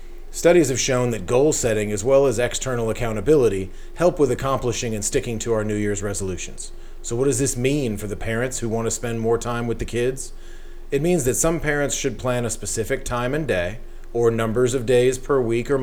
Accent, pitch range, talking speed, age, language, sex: American, 110-135 Hz, 215 wpm, 40-59, English, male